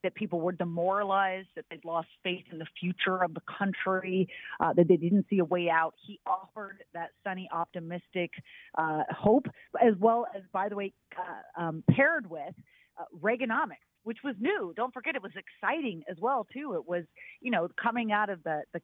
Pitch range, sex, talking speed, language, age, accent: 175-225 Hz, female, 200 wpm, English, 40-59, American